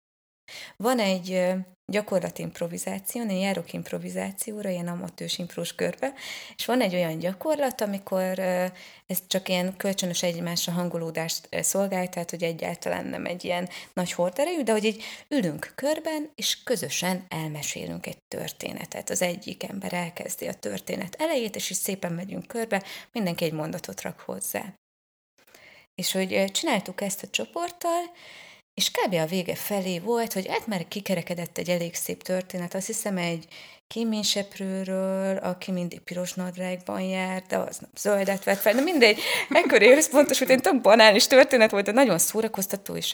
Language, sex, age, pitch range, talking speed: Hungarian, female, 20-39, 175-230 Hz, 145 wpm